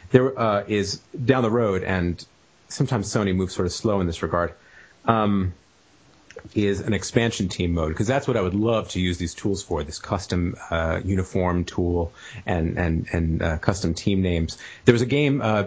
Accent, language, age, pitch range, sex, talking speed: American, English, 30-49, 90-110 Hz, male, 190 wpm